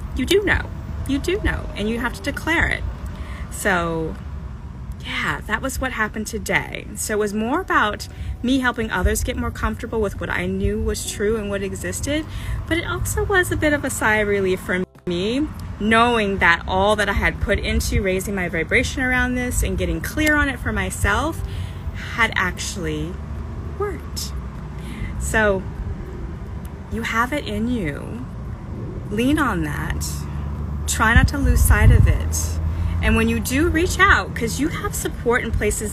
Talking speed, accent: 170 wpm, American